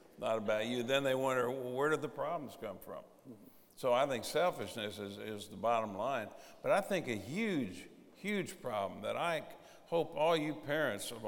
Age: 60-79